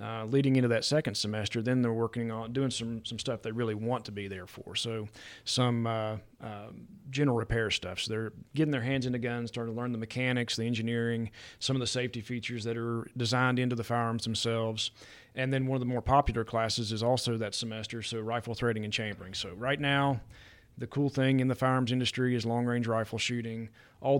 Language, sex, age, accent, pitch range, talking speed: English, male, 30-49, American, 110-125 Hz, 215 wpm